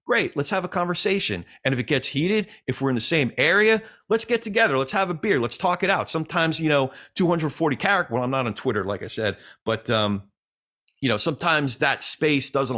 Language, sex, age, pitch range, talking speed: English, male, 40-59, 120-175 Hz, 225 wpm